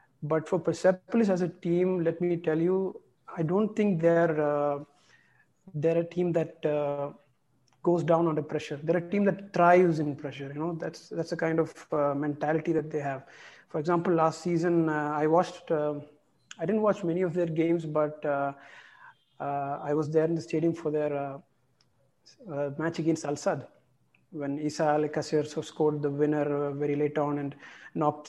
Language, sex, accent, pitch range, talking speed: English, male, Indian, 150-175 Hz, 180 wpm